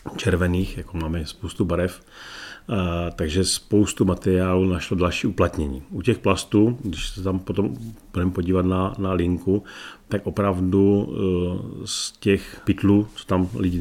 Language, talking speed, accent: Czech, 135 wpm, native